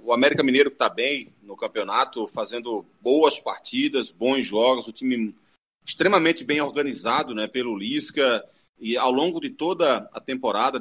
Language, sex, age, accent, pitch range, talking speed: Portuguese, male, 30-49, Brazilian, 125-185 Hz, 155 wpm